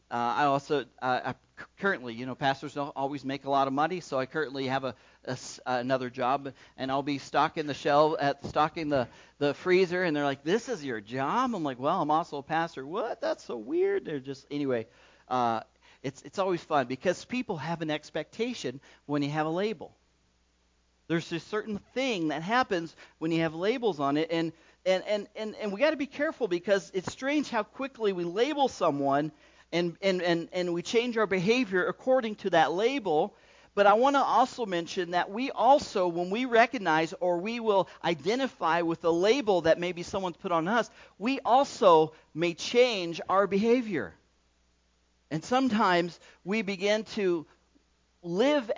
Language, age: English, 40-59